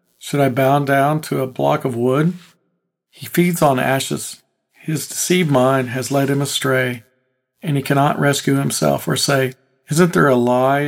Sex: male